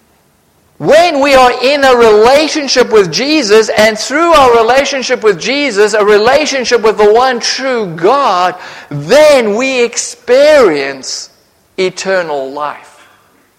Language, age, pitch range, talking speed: English, 50-69, 215-290 Hz, 110 wpm